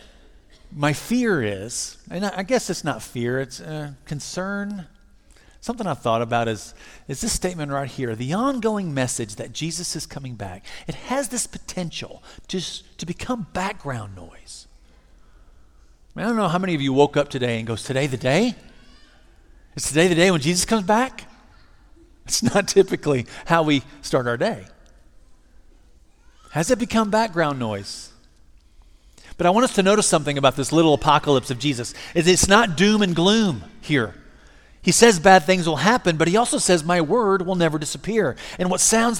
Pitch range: 130-200 Hz